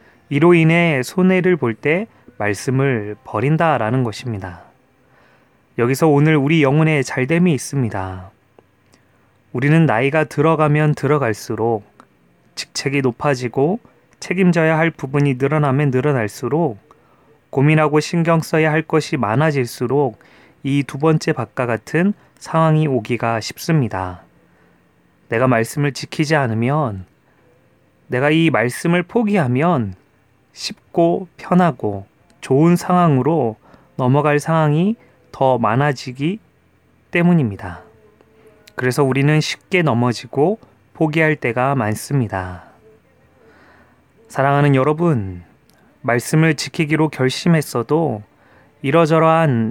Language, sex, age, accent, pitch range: Korean, male, 20-39, native, 115-160 Hz